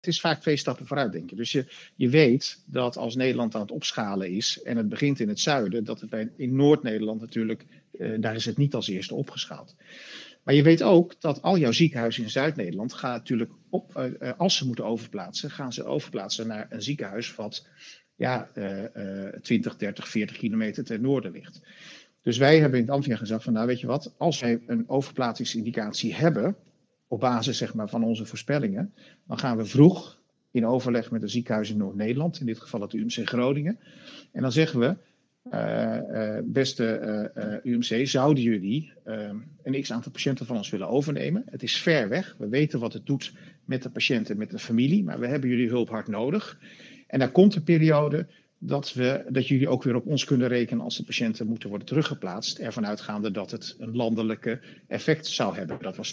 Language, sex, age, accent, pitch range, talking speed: Dutch, male, 50-69, Dutch, 115-150 Hz, 205 wpm